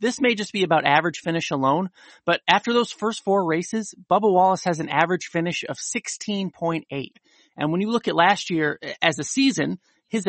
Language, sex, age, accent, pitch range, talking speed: English, male, 30-49, American, 155-200 Hz, 190 wpm